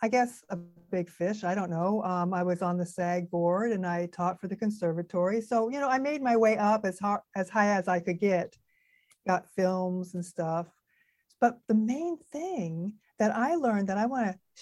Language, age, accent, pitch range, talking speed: English, 50-69, American, 180-225 Hz, 215 wpm